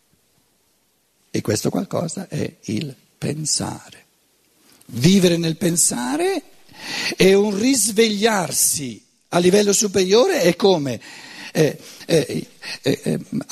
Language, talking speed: Italian, 90 wpm